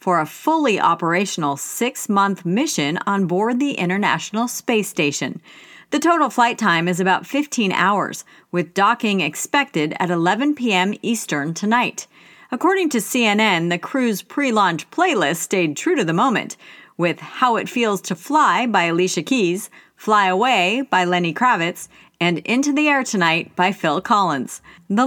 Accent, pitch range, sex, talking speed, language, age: American, 175-245 Hz, female, 150 wpm, English, 40-59